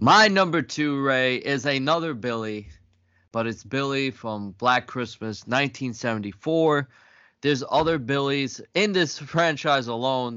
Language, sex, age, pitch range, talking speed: English, male, 20-39, 105-125 Hz, 120 wpm